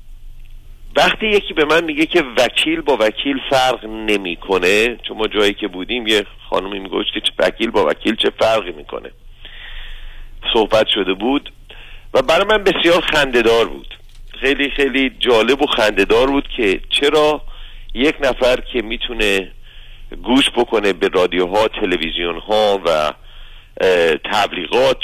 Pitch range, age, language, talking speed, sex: 110-160 Hz, 50-69, Persian, 130 wpm, male